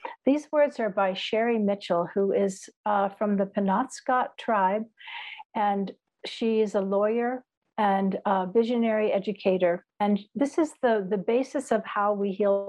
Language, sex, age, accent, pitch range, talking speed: English, female, 60-79, American, 200-250 Hz, 150 wpm